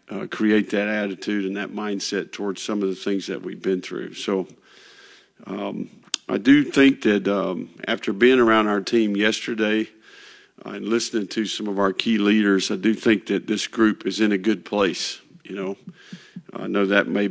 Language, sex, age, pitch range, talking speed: English, male, 50-69, 100-110 Hz, 190 wpm